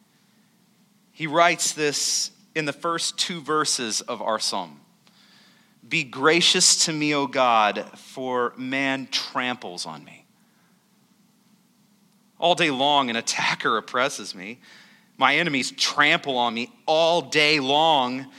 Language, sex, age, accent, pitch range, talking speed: English, male, 30-49, American, 135-215 Hz, 120 wpm